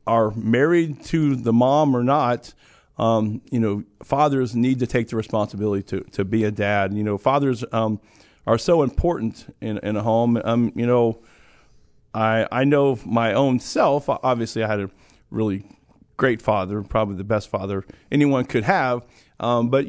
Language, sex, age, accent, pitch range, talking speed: English, male, 40-59, American, 110-135 Hz, 170 wpm